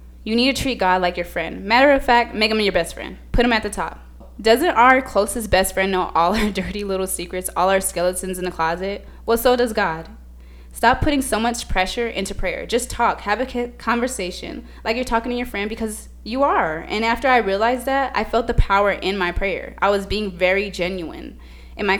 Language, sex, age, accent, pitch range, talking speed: English, female, 20-39, American, 180-235 Hz, 225 wpm